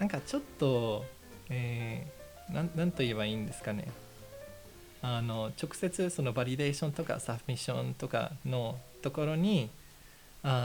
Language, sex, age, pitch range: Japanese, male, 20-39, 115-155 Hz